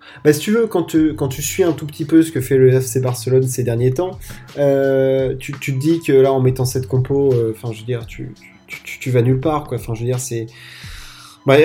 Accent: French